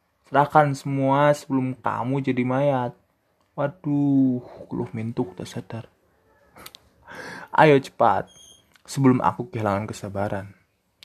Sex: male